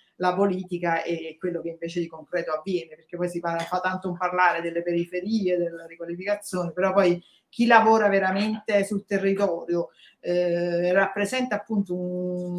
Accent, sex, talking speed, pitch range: native, female, 155 wpm, 170-200 Hz